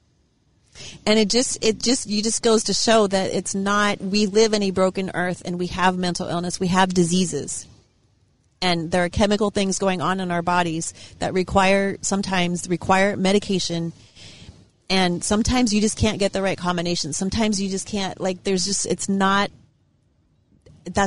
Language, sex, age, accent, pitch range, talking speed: English, female, 30-49, American, 180-205 Hz, 180 wpm